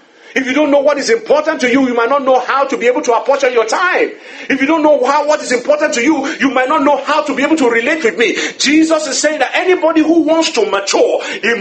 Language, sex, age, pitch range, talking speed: English, male, 50-69, 235-360 Hz, 270 wpm